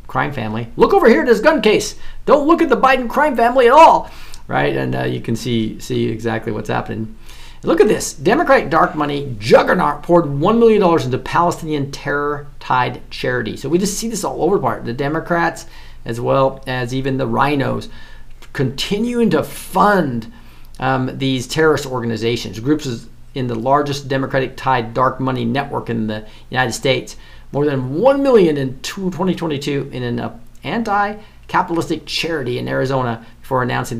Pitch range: 115-155 Hz